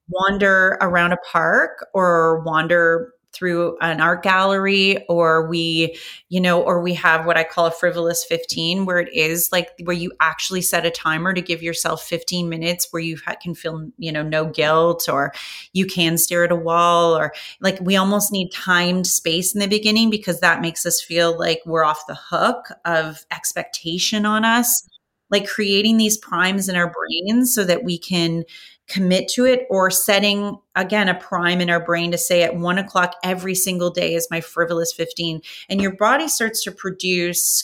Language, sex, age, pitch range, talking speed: English, female, 30-49, 170-205 Hz, 185 wpm